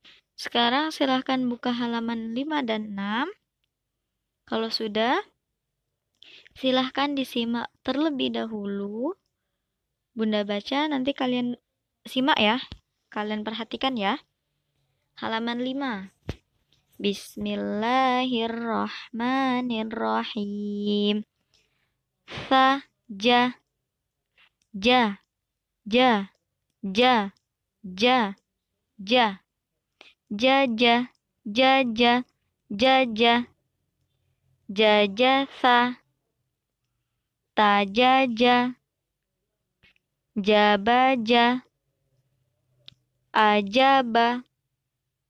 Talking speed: 50 wpm